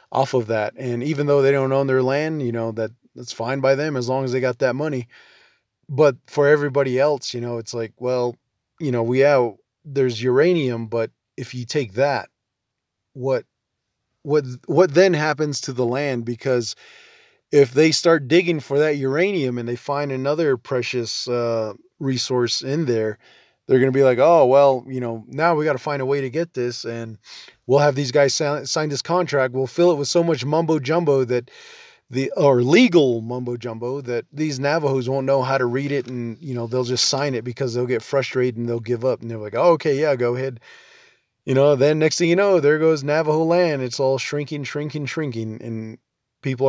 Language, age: English, 20-39